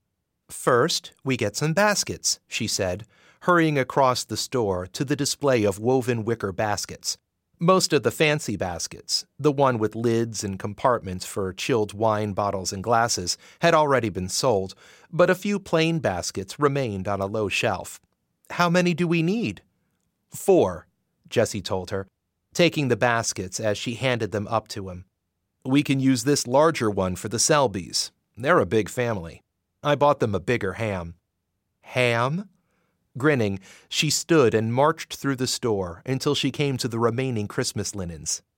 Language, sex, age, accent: English, male, 30-49, American